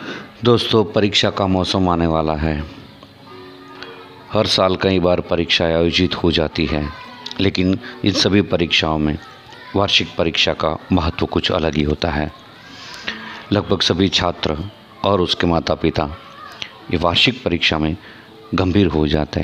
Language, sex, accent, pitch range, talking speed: Hindi, male, native, 80-100 Hz, 135 wpm